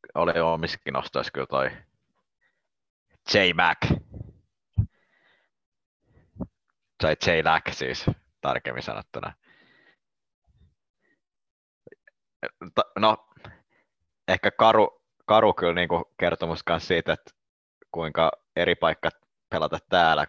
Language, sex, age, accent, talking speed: Finnish, male, 30-49, native, 70 wpm